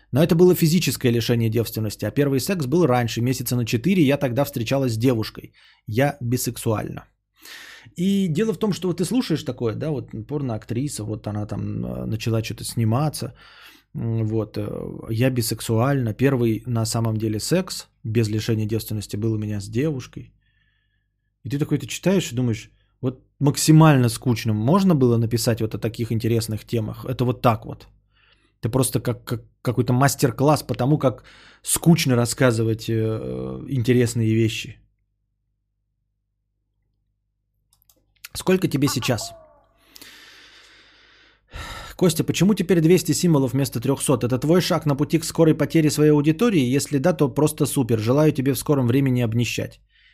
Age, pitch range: 20-39, 110-145 Hz